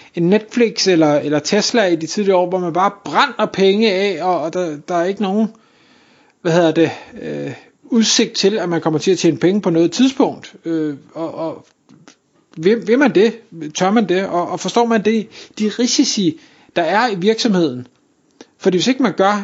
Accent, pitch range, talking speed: native, 165-215 Hz, 195 wpm